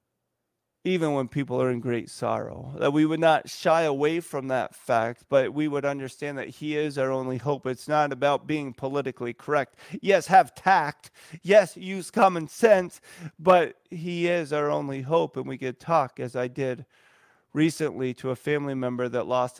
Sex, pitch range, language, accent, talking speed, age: male, 125-150 Hz, English, American, 180 wpm, 30-49